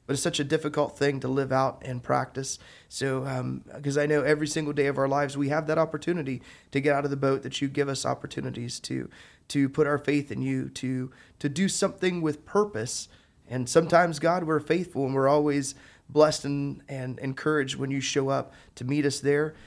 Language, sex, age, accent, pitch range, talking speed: English, male, 20-39, American, 130-150 Hz, 215 wpm